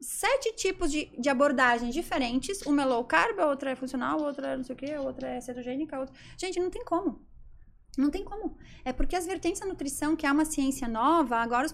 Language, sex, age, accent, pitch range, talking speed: Portuguese, female, 20-39, Brazilian, 255-315 Hz, 240 wpm